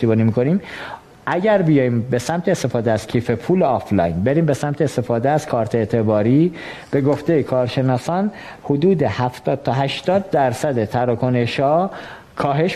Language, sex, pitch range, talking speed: Persian, male, 125-160 Hz, 125 wpm